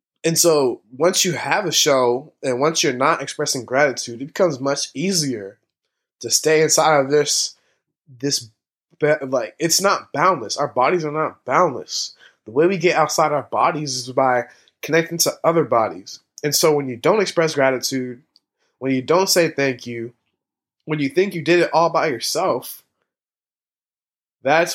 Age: 20-39